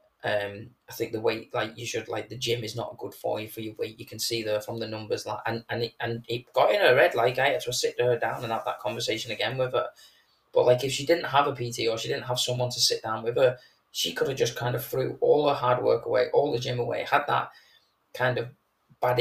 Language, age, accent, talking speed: English, 20-39, British, 270 wpm